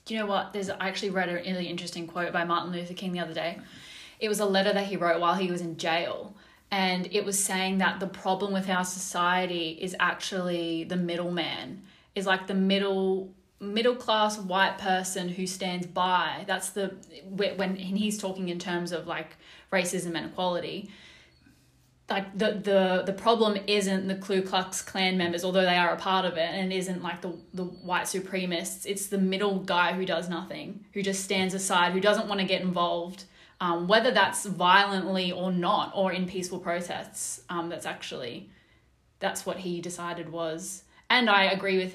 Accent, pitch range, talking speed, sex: Australian, 175-195 Hz, 190 wpm, female